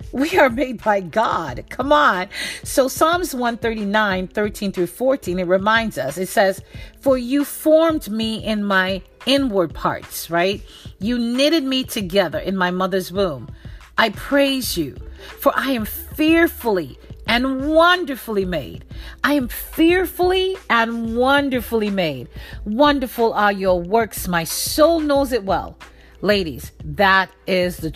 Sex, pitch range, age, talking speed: female, 195-265 Hz, 50-69, 135 wpm